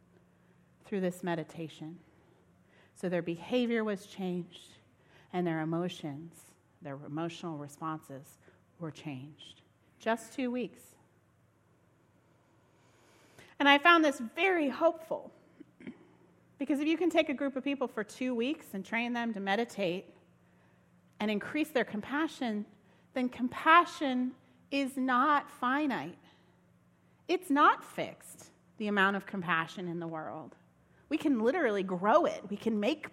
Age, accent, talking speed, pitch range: 40-59, American, 125 wpm, 155-255 Hz